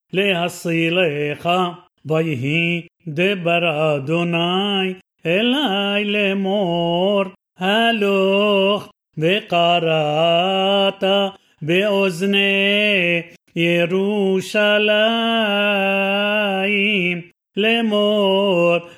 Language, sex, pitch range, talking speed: Hebrew, male, 170-200 Hz, 35 wpm